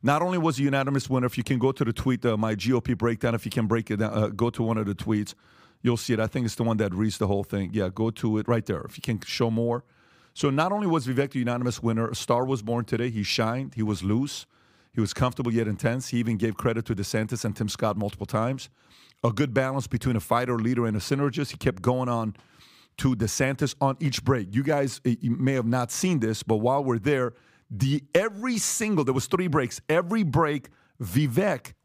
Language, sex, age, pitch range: English, male, 40-59, 115-145 Hz